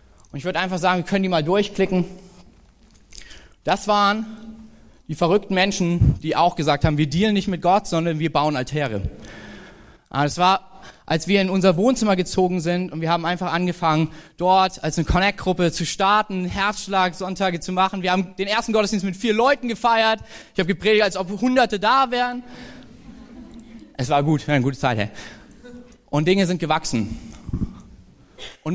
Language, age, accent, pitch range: German, 20-39, German, 150-195 Hz